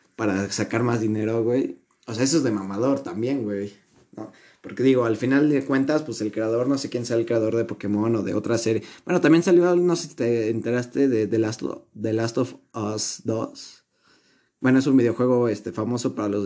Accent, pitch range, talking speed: Mexican, 110-135 Hz, 220 wpm